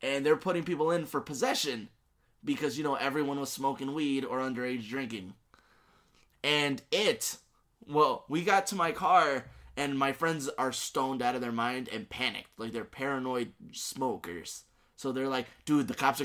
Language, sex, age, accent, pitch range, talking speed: English, male, 20-39, American, 125-155 Hz, 175 wpm